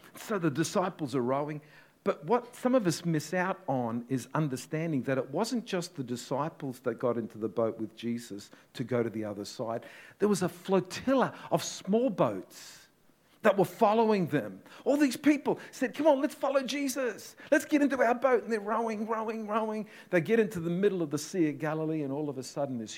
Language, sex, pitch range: English, male, 130-190 Hz